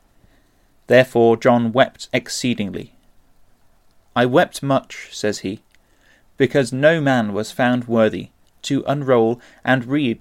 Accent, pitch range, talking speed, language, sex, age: British, 115-140 Hz, 110 wpm, English, male, 30-49